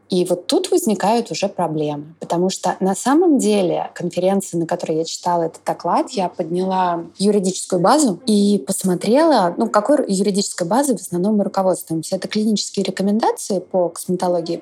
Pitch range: 175-220 Hz